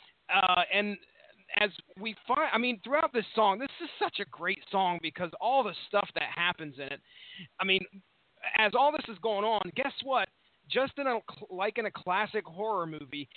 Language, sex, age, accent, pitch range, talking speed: English, male, 30-49, American, 185-245 Hz, 185 wpm